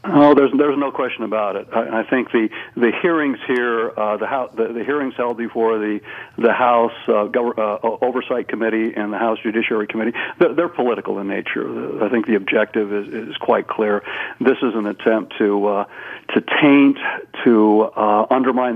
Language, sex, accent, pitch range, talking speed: English, male, American, 110-125 Hz, 190 wpm